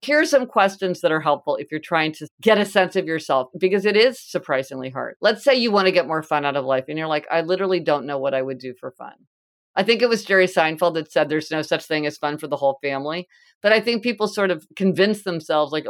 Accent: American